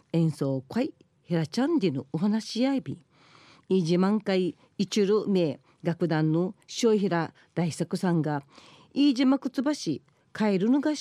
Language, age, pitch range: Japanese, 40-59, 160-235 Hz